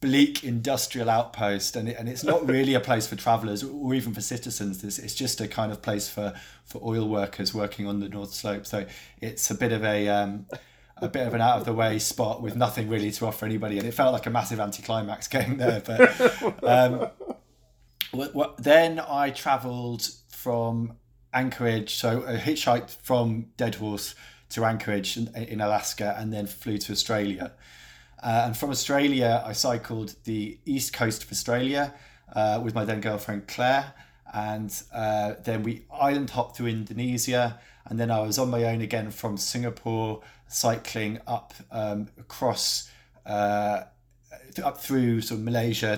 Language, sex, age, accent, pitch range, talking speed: English, male, 20-39, British, 105-125 Hz, 170 wpm